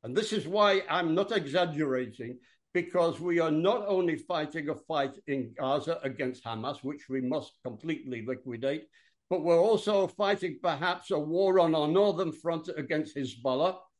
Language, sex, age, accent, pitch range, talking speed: English, male, 60-79, British, 145-195 Hz, 160 wpm